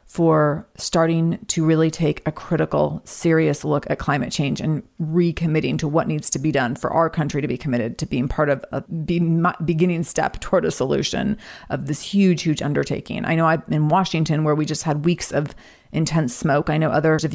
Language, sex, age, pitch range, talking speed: English, female, 30-49, 150-175 Hz, 200 wpm